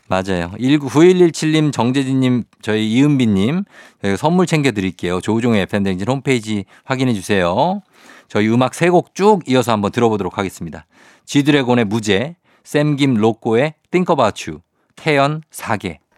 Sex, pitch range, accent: male, 100-135 Hz, native